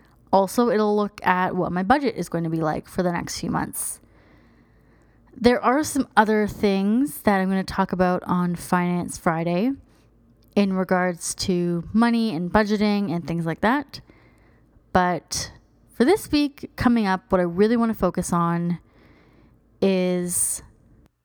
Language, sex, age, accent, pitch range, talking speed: English, female, 20-39, American, 175-215 Hz, 155 wpm